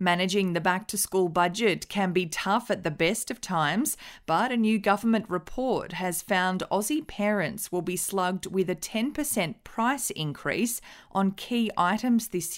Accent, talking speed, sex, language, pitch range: Australian, 155 wpm, female, English, 175-215 Hz